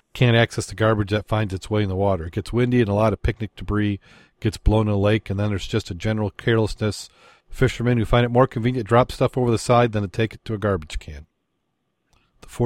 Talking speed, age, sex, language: 245 wpm, 40-59, male, English